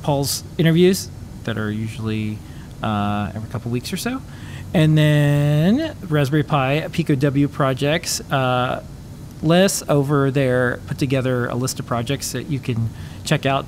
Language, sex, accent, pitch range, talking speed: English, male, American, 120-150 Hz, 145 wpm